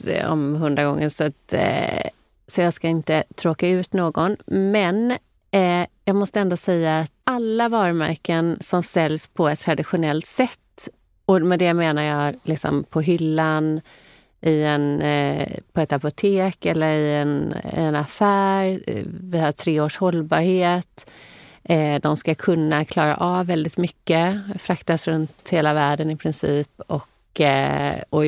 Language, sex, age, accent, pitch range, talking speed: Swedish, female, 30-49, native, 150-180 Hz, 140 wpm